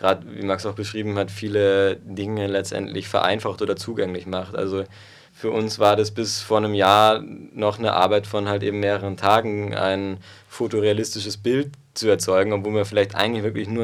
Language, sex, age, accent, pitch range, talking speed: German, male, 20-39, German, 95-110 Hz, 180 wpm